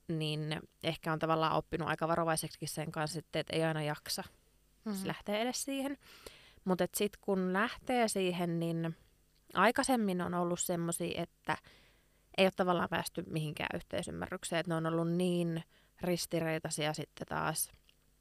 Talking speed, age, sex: 140 wpm, 20-39, female